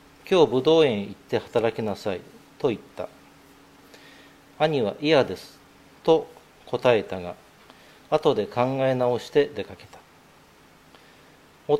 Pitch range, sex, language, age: 115-145 Hz, male, Japanese, 40-59